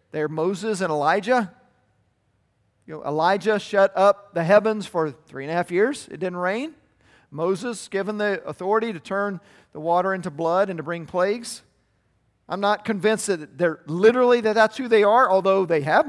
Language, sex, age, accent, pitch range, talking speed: English, male, 50-69, American, 150-200 Hz, 180 wpm